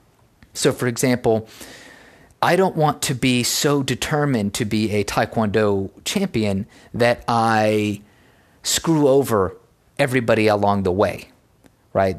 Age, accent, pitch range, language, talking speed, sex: 30-49, American, 105-125 Hz, English, 120 wpm, male